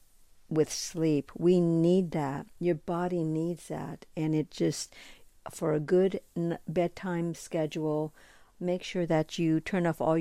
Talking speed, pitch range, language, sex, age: 140 wpm, 160-190 Hz, English, female, 60-79